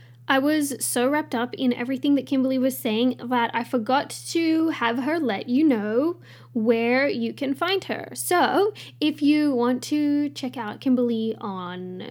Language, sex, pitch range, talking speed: English, female, 215-270 Hz, 170 wpm